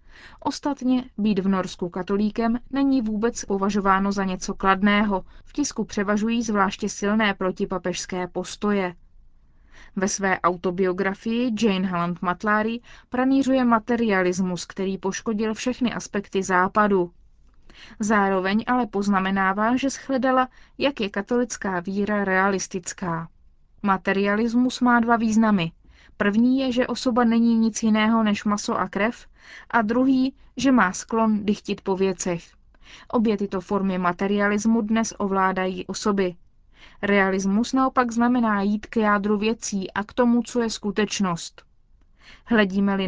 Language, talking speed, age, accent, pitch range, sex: Czech, 120 wpm, 20-39, native, 190-235 Hz, female